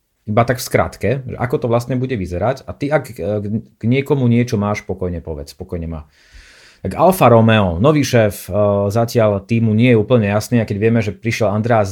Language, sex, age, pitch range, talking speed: Slovak, male, 30-49, 100-125 Hz, 185 wpm